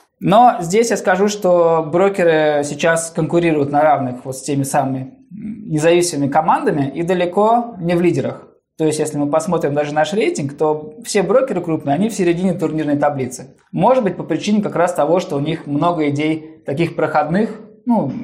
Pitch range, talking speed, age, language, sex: 140-175 Hz, 170 wpm, 20-39, Russian, male